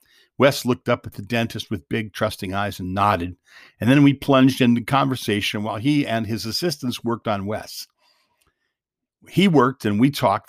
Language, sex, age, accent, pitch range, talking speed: English, male, 50-69, American, 110-140 Hz, 175 wpm